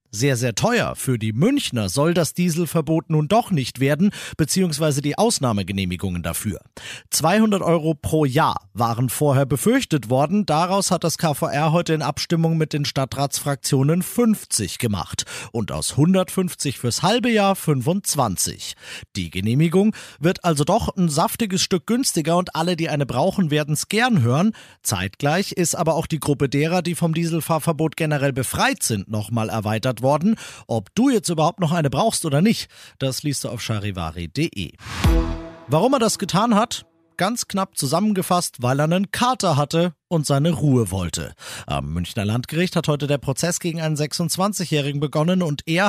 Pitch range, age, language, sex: 130-180 Hz, 40-59, German, male